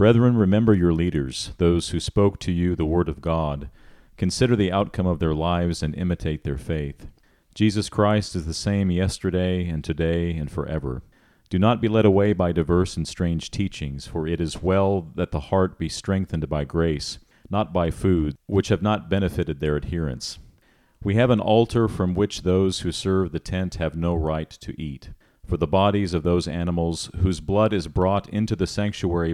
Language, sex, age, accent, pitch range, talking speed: English, male, 40-59, American, 80-100 Hz, 190 wpm